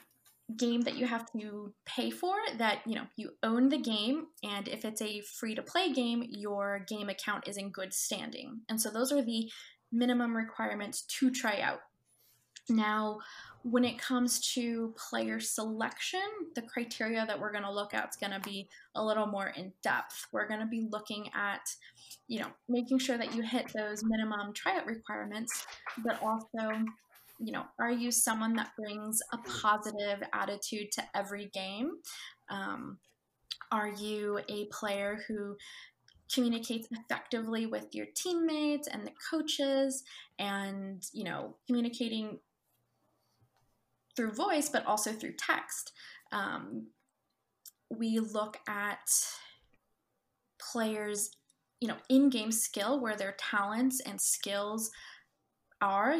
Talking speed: 140 wpm